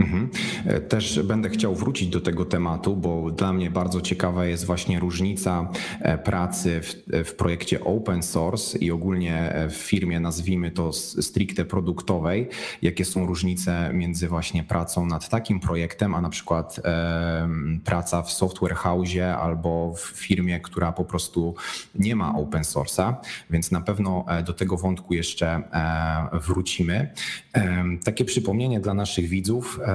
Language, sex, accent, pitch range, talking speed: Polish, male, native, 85-95 Hz, 140 wpm